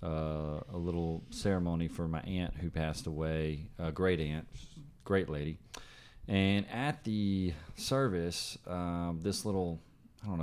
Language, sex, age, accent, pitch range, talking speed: English, male, 40-59, American, 85-115 Hz, 145 wpm